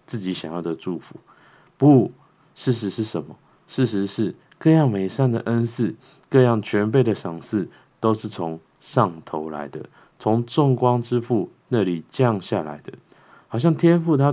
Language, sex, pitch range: Chinese, male, 95-130 Hz